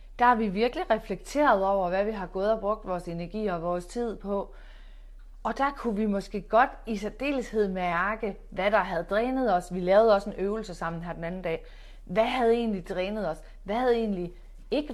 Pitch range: 185-240 Hz